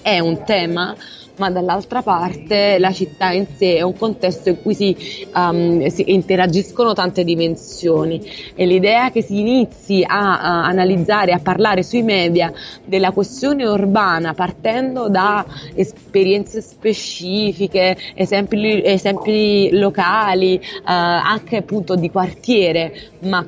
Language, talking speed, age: Italian, 130 wpm, 20-39